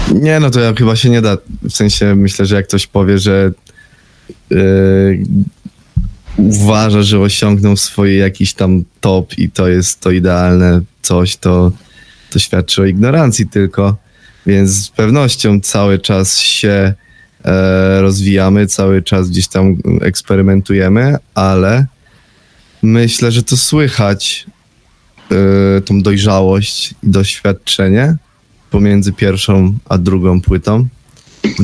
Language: Polish